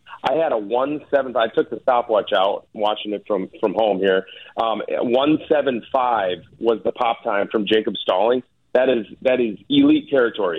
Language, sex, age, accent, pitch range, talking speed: English, male, 40-59, American, 110-140 Hz, 175 wpm